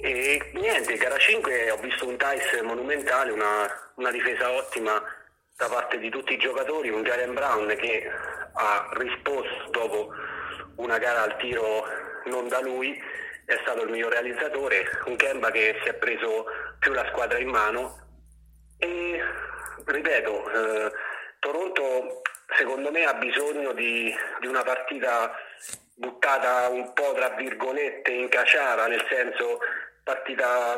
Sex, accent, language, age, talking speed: male, native, Italian, 30-49, 140 wpm